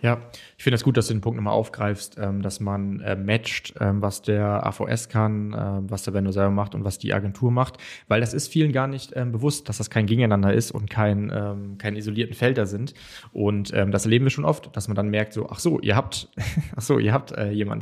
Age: 20-39